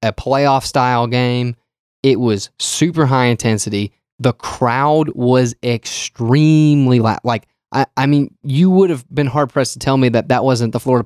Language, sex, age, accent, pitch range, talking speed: English, male, 10-29, American, 115-135 Hz, 175 wpm